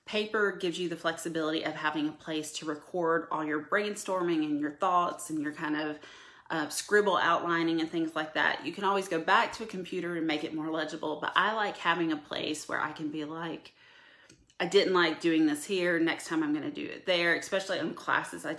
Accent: American